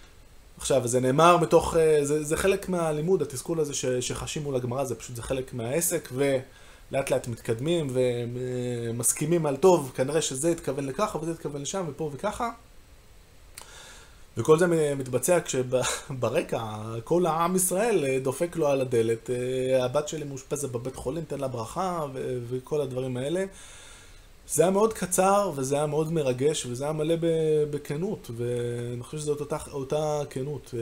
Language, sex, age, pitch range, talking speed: Hebrew, male, 20-39, 120-155 Hz, 145 wpm